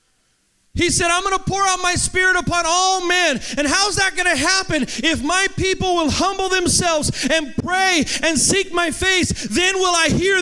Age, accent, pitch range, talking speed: 30-49, American, 265-330 Hz, 200 wpm